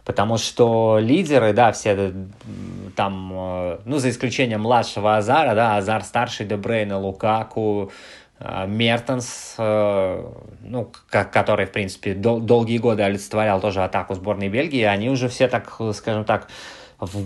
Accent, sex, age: native, male, 20-39